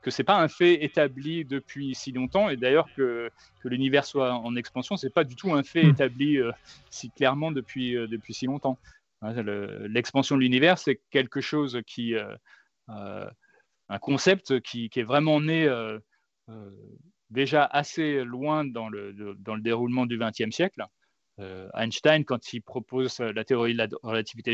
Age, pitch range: 30-49, 115-145 Hz